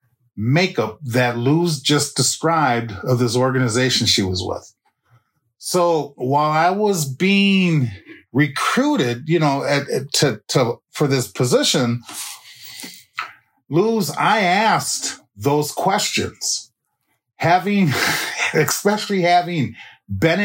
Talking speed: 105 wpm